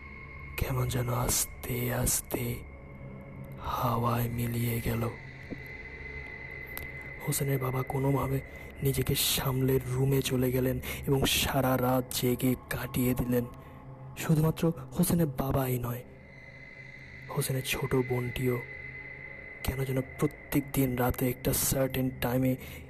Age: 20-39